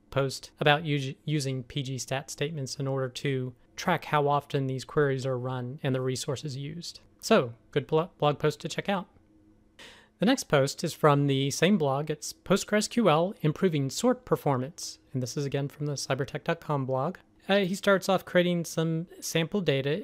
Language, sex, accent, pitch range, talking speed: English, male, American, 130-160 Hz, 170 wpm